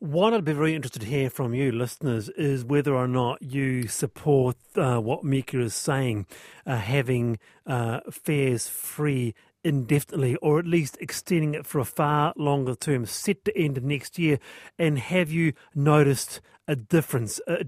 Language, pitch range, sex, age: English, 130-165 Hz, male, 40-59